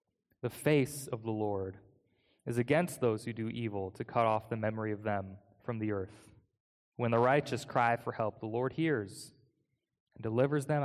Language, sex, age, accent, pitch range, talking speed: English, male, 20-39, American, 115-155 Hz, 185 wpm